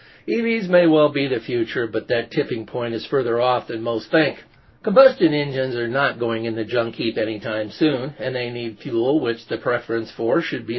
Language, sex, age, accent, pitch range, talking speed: English, male, 50-69, American, 115-160 Hz, 205 wpm